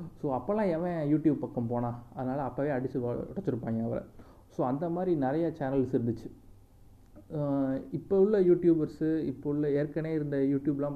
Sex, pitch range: male, 125-155 Hz